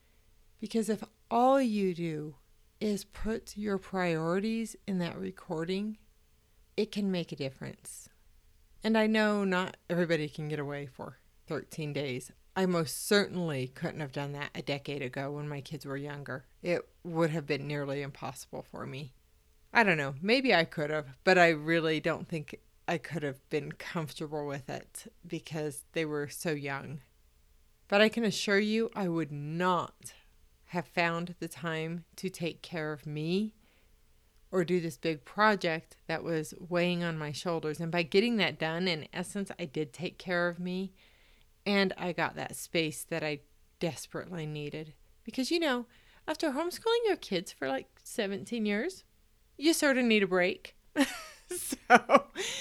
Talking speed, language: 165 wpm, English